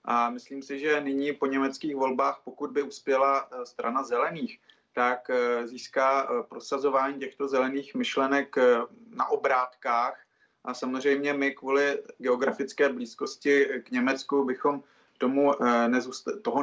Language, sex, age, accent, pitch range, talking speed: Czech, male, 30-49, native, 130-145 Hz, 110 wpm